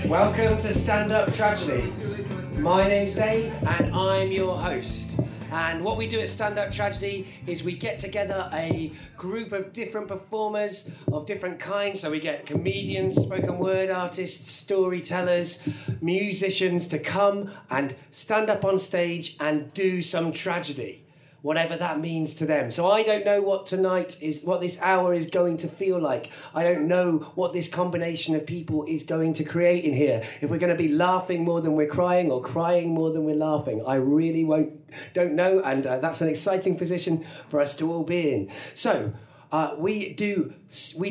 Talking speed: 180 wpm